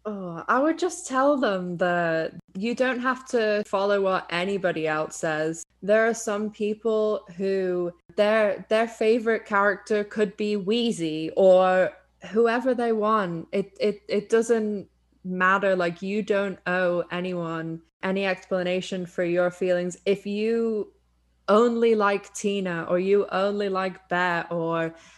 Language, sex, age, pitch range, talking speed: English, female, 10-29, 180-215 Hz, 140 wpm